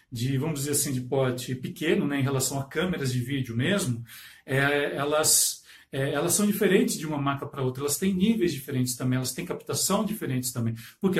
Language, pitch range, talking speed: Portuguese, 130-175 Hz, 200 wpm